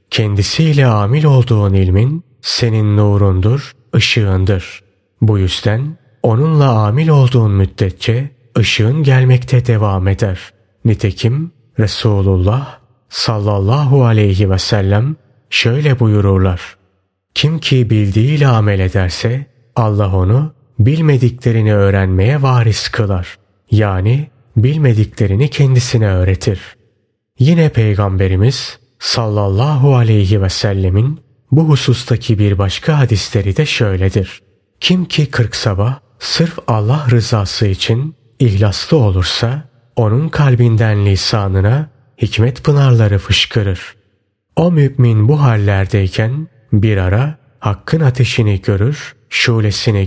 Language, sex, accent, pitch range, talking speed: Turkish, male, native, 100-130 Hz, 95 wpm